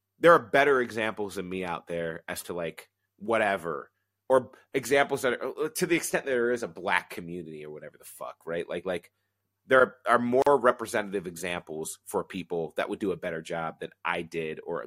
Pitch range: 95-115 Hz